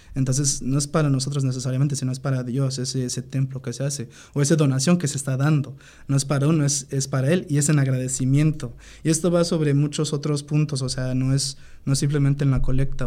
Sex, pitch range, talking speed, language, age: male, 130-145 Hz, 240 wpm, Spanish, 20-39